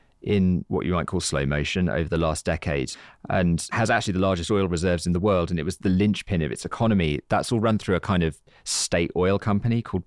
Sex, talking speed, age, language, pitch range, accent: male, 240 wpm, 30-49, English, 85-110 Hz, British